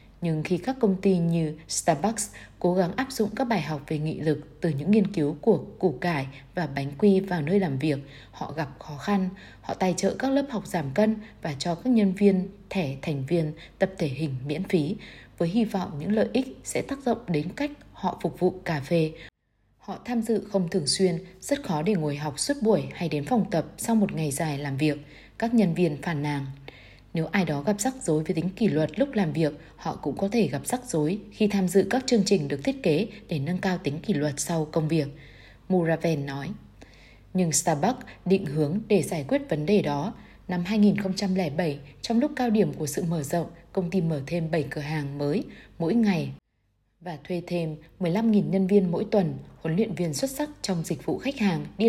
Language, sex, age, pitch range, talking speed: Vietnamese, female, 20-39, 155-205 Hz, 220 wpm